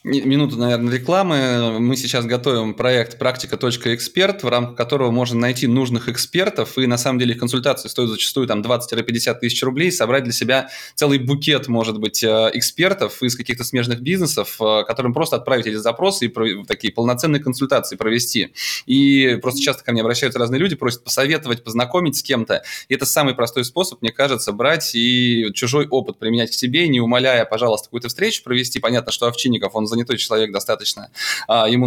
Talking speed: 170 wpm